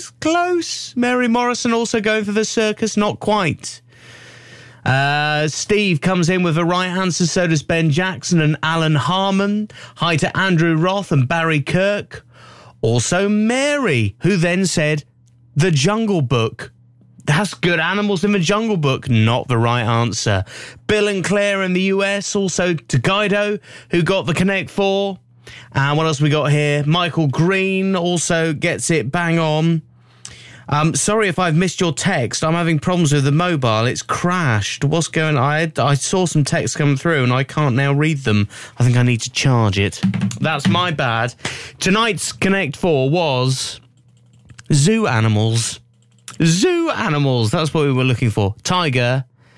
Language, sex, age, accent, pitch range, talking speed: English, male, 30-49, British, 120-185 Hz, 160 wpm